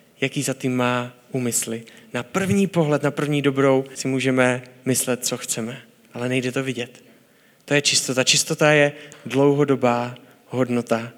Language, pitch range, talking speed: Czech, 130-170 Hz, 145 wpm